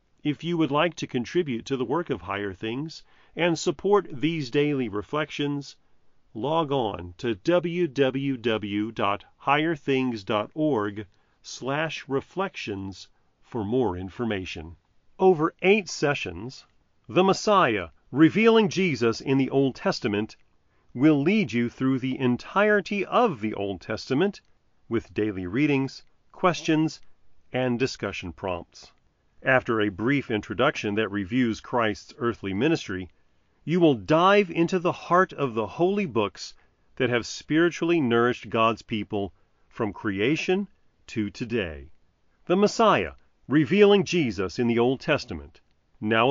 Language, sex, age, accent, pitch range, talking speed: English, male, 40-59, American, 105-160 Hz, 120 wpm